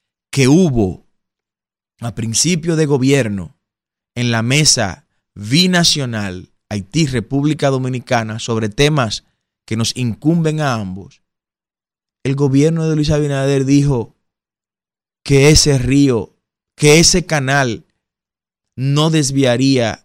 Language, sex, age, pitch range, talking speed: Spanish, male, 30-49, 110-160 Hz, 100 wpm